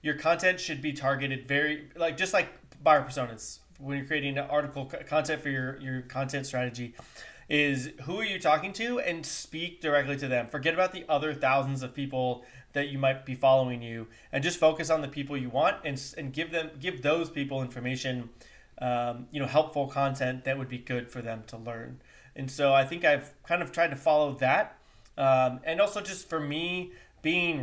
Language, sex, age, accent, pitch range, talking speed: English, male, 30-49, American, 130-155 Hz, 200 wpm